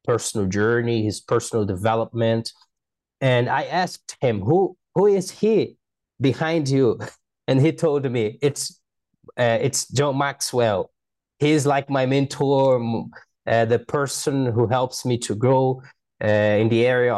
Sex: male